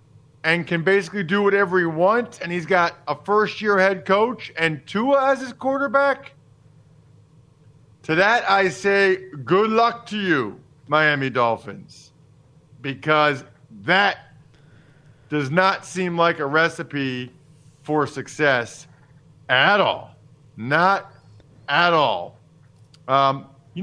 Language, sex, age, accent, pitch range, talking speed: English, male, 40-59, American, 135-185 Hz, 115 wpm